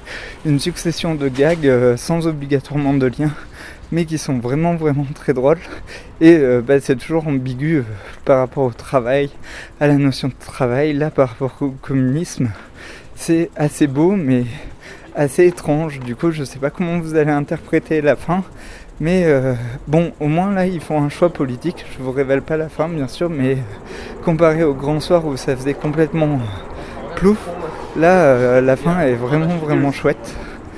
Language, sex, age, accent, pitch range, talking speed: French, male, 20-39, French, 130-160 Hz, 175 wpm